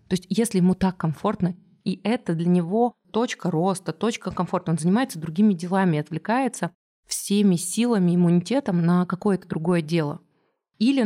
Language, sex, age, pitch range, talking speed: Russian, female, 20-39, 175-215 Hz, 145 wpm